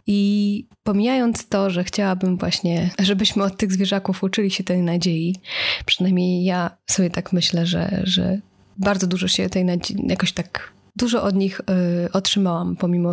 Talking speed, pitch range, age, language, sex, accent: 150 wpm, 180-205 Hz, 20-39, Polish, female, native